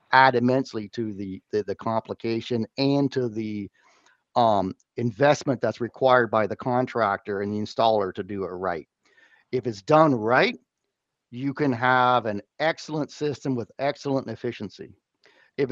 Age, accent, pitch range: 50-69, American, 110-135 Hz